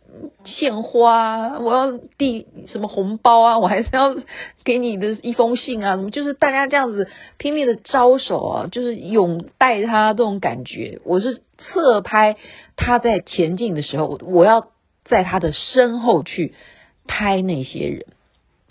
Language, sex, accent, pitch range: Chinese, female, native, 160-235 Hz